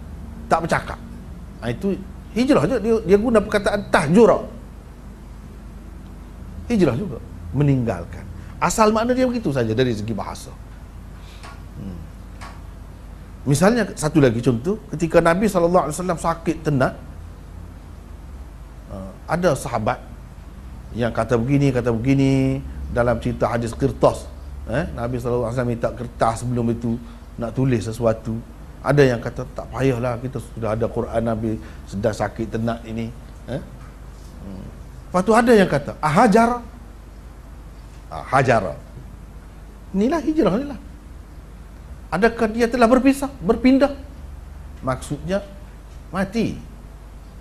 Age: 40-59